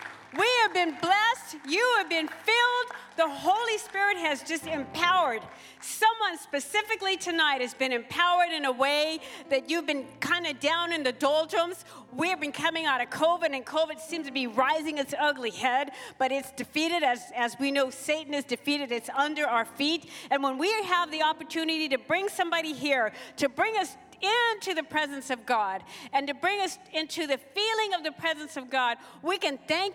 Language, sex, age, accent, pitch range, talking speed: English, female, 50-69, American, 275-360 Hz, 190 wpm